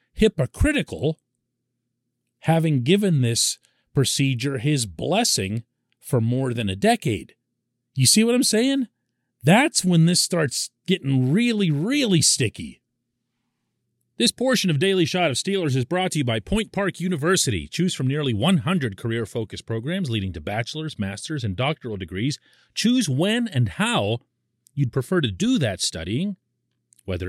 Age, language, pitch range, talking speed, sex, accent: 40-59, English, 110-175 Hz, 140 wpm, male, American